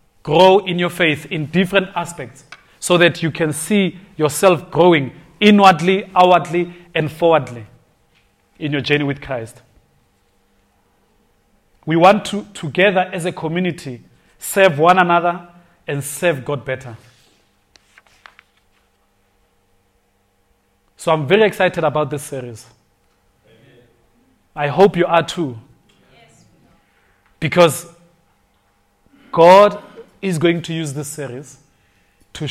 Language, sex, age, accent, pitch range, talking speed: English, male, 30-49, South African, 130-175 Hz, 105 wpm